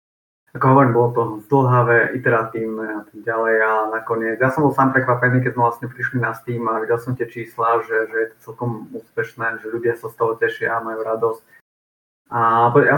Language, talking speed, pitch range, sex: Slovak, 205 wpm, 110-125 Hz, male